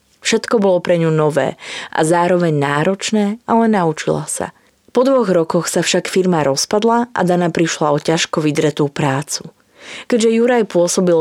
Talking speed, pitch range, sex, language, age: 150 wpm, 155-195 Hz, female, Slovak, 20-39